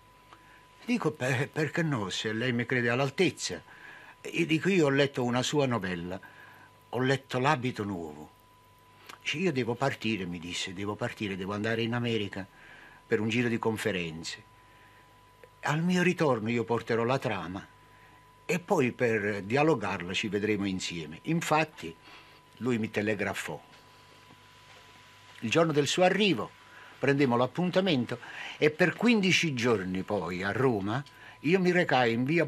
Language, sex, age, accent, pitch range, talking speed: Italian, male, 60-79, native, 105-140 Hz, 135 wpm